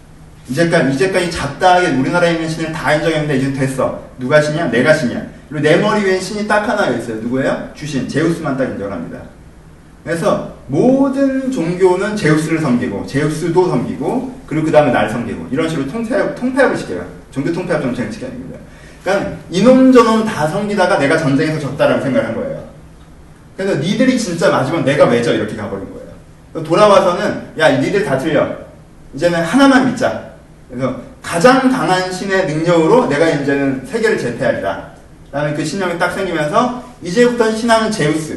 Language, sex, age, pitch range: Korean, male, 30-49, 140-210 Hz